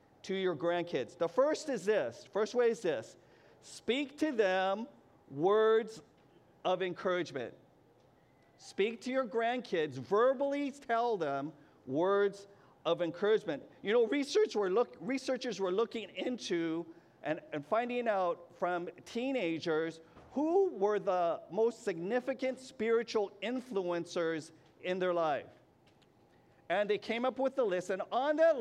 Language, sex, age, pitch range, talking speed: English, male, 50-69, 170-235 Hz, 130 wpm